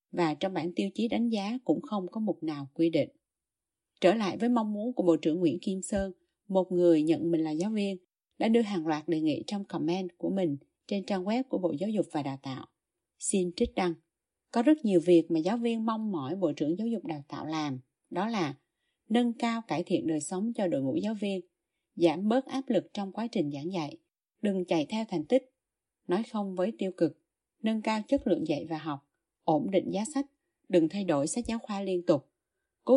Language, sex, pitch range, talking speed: Vietnamese, female, 170-230 Hz, 225 wpm